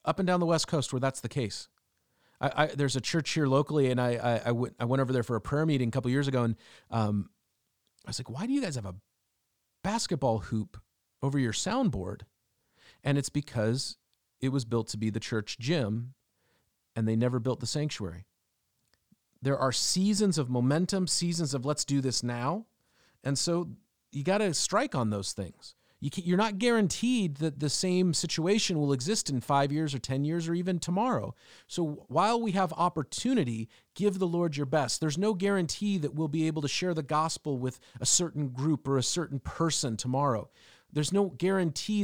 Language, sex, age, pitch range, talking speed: English, male, 40-59, 120-175 Hz, 195 wpm